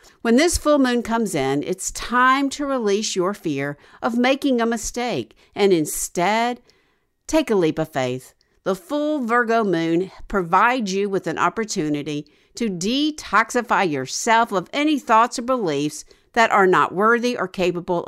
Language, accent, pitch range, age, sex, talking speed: English, American, 175-250 Hz, 50-69, female, 155 wpm